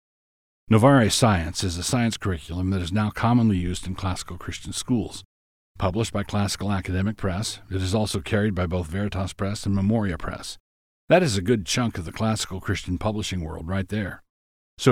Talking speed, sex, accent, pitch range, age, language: 180 wpm, male, American, 90-110 Hz, 50-69, English